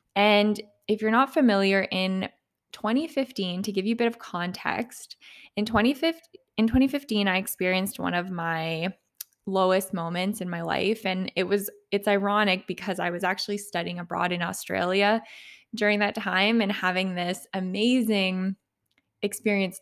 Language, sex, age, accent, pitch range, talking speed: English, female, 20-39, American, 175-210 Hz, 150 wpm